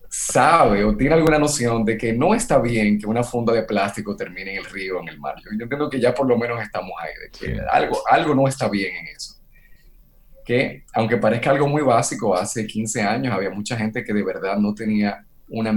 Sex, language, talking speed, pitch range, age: male, Spanish, 225 wpm, 100-125 Hz, 30-49